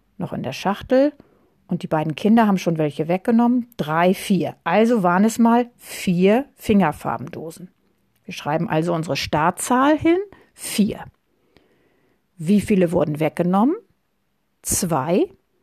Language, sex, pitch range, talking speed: German, female, 175-230 Hz, 125 wpm